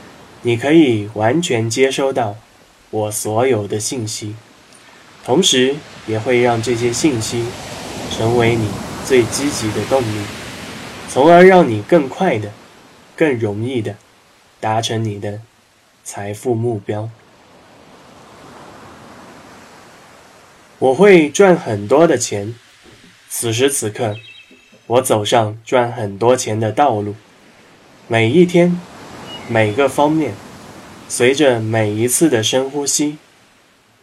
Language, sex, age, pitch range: Chinese, male, 20-39, 105-130 Hz